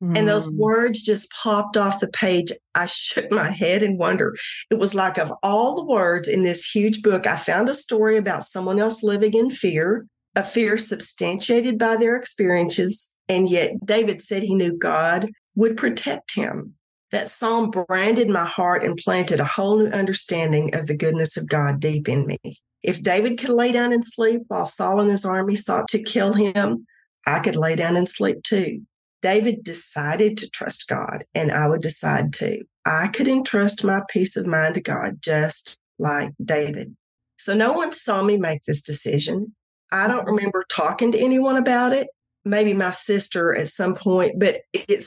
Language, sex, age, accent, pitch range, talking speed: English, female, 40-59, American, 175-220 Hz, 185 wpm